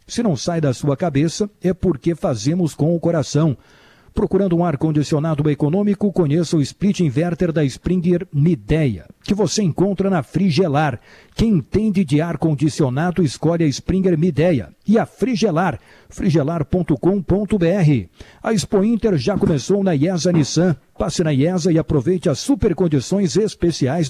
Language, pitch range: Portuguese, 155-195 Hz